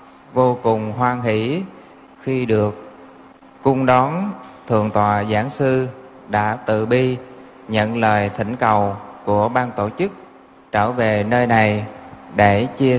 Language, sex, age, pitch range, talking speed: Vietnamese, male, 20-39, 105-130 Hz, 135 wpm